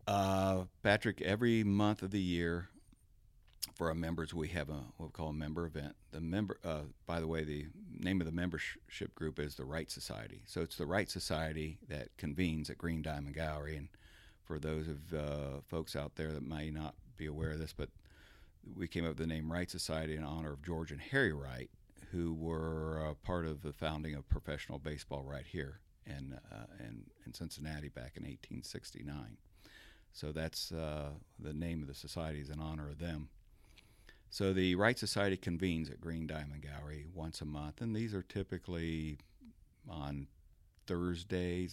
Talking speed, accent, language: 185 wpm, American, English